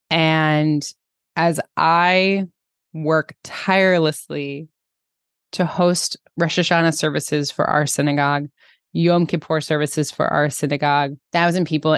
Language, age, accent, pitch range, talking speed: English, 20-39, American, 145-170 Hz, 105 wpm